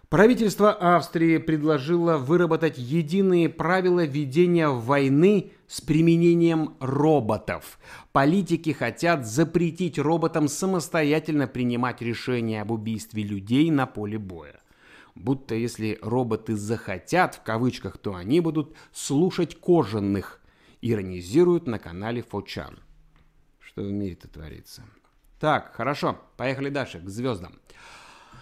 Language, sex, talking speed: Russian, male, 105 wpm